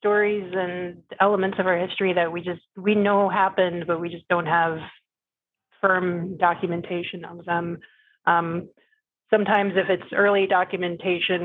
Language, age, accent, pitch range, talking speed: English, 30-49, American, 175-195 Hz, 140 wpm